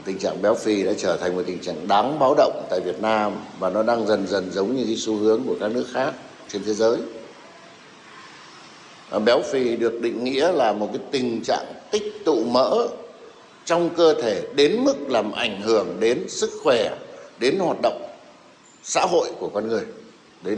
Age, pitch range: 60-79, 110-160 Hz